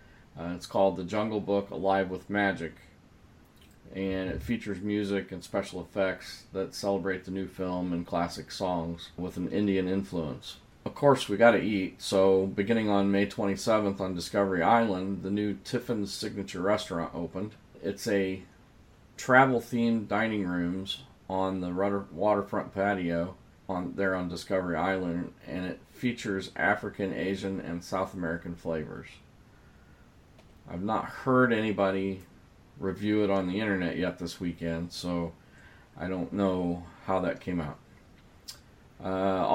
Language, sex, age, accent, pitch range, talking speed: English, male, 40-59, American, 85-100 Hz, 140 wpm